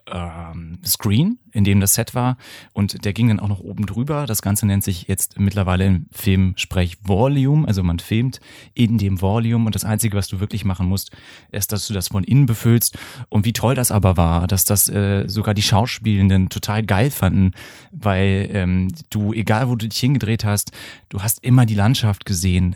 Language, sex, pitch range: German, male, 100-115 Hz